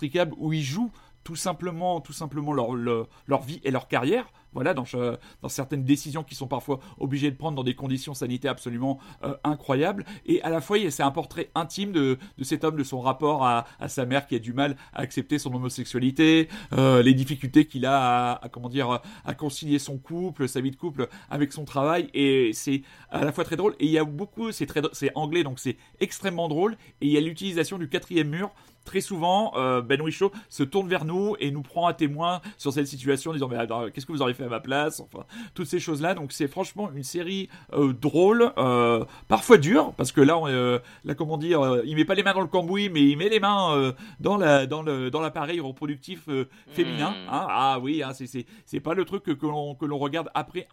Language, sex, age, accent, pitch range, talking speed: French, male, 40-59, French, 135-170 Hz, 235 wpm